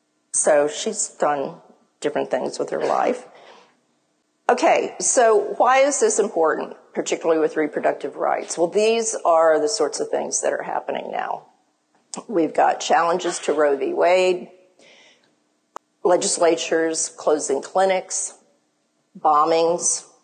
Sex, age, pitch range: female, 40-59, 145-185 Hz